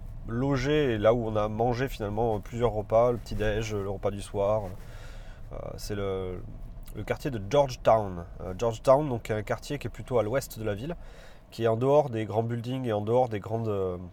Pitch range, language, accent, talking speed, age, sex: 105-130 Hz, French, French, 210 wpm, 30-49, male